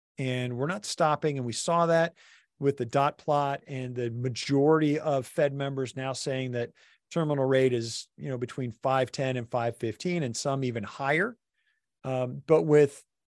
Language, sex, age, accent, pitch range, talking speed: English, male, 40-59, American, 125-150 Hz, 165 wpm